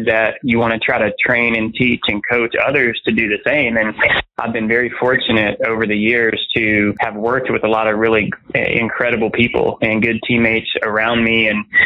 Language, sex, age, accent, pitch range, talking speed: English, male, 20-39, American, 110-115 Hz, 200 wpm